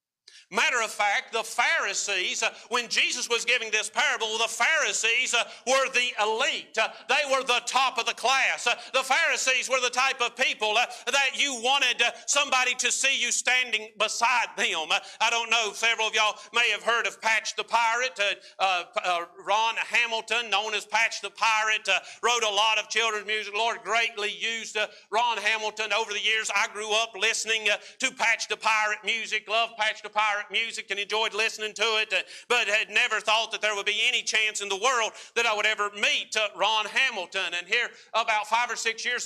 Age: 50-69